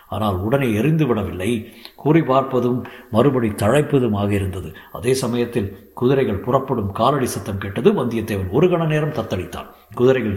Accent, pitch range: native, 105-140 Hz